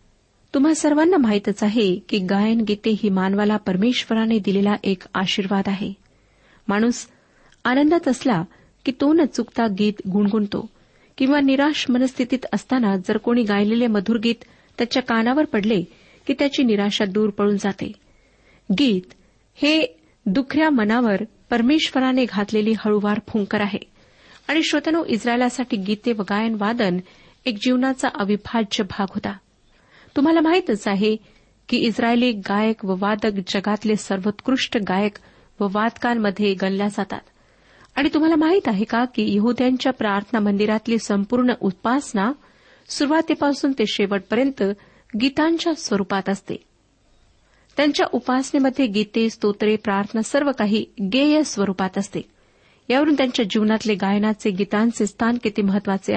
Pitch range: 205-260 Hz